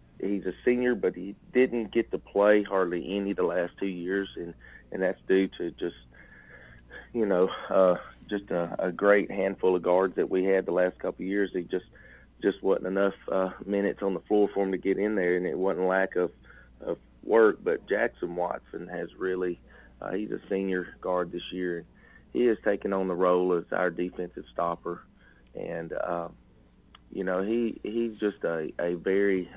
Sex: male